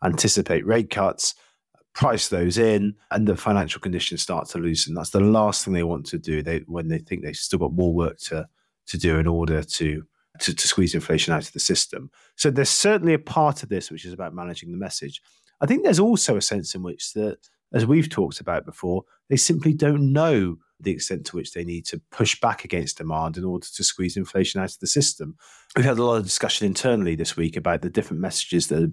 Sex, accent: male, British